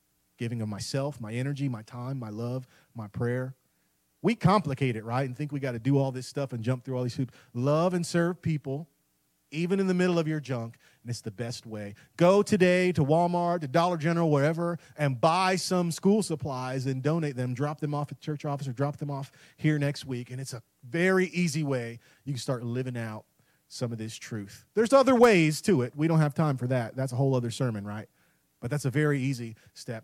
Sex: male